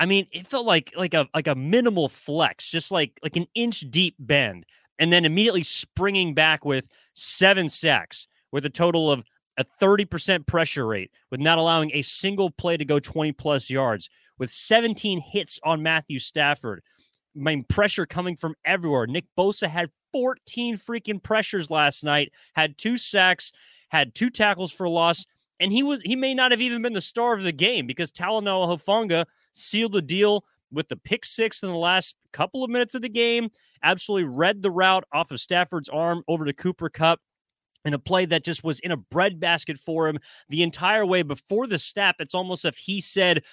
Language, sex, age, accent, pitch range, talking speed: English, male, 30-49, American, 150-205 Hz, 195 wpm